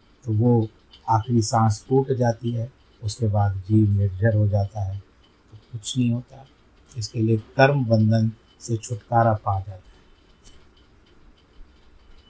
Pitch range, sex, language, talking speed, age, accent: 95-130 Hz, male, Hindi, 130 wpm, 50-69, native